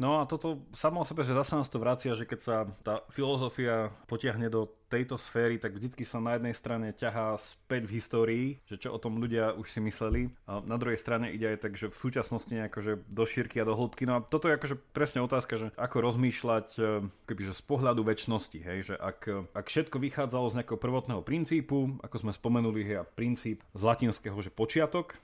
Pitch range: 110-130 Hz